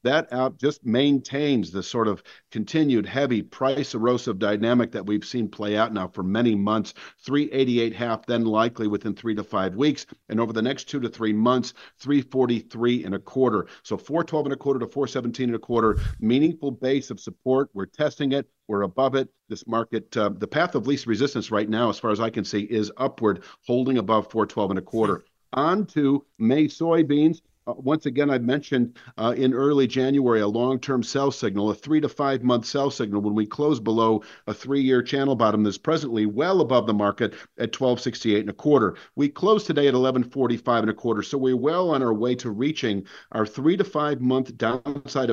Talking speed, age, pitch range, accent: 195 wpm, 50-69, 110-140 Hz, American